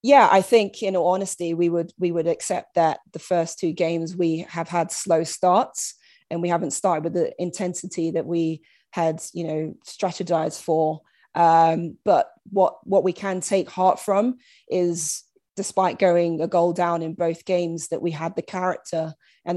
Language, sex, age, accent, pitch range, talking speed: English, female, 20-39, British, 170-190 Hz, 180 wpm